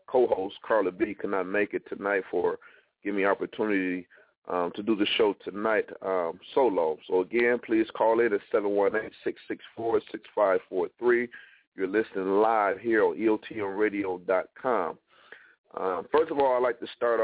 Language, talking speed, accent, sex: English, 140 wpm, American, male